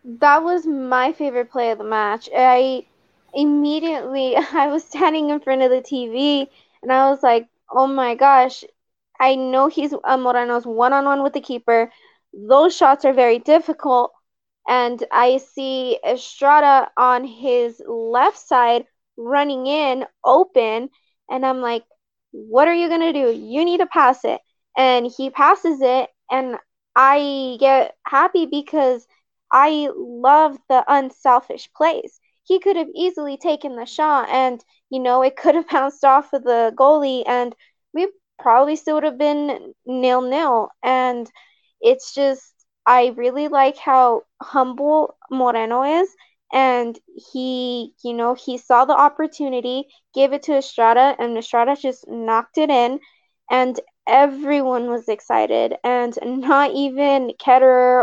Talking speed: 145 wpm